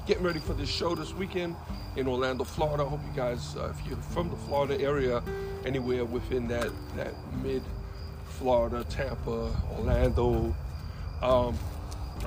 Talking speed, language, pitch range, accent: 145 wpm, English, 90-145 Hz, American